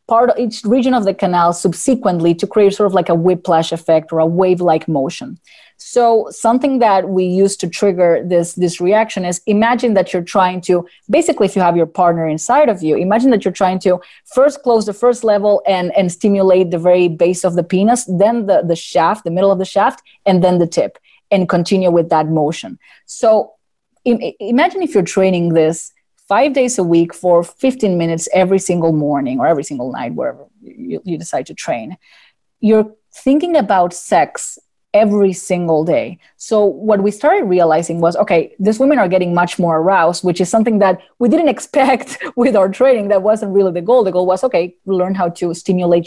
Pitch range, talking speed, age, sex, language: 175-220 Hz, 200 wpm, 30-49, female, English